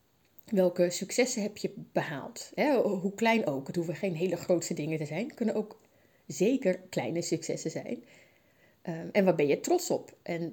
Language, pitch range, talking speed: Dutch, 165-215 Hz, 170 wpm